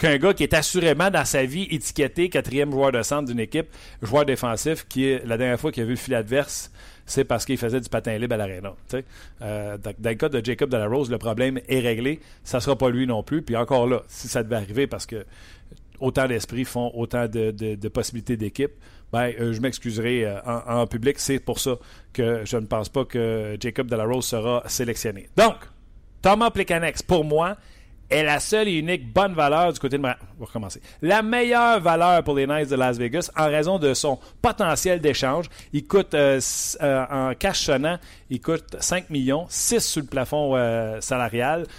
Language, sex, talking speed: French, male, 210 wpm